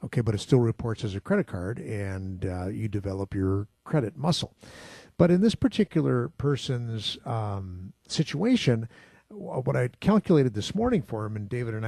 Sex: male